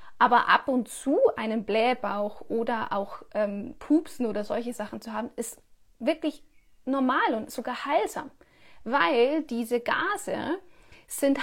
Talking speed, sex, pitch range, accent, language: 130 wpm, female, 225-280 Hz, German, German